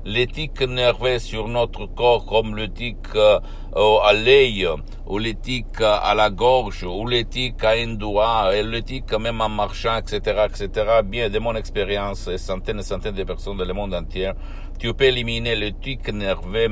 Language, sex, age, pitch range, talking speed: Italian, male, 60-79, 90-110 Hz, 170 wpm